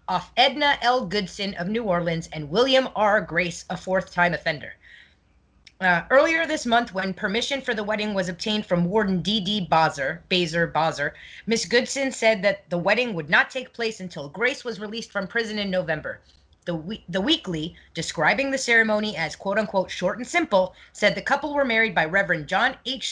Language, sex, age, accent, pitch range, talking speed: English, female, 30-49, American, 180-240 Hz, 175 wpm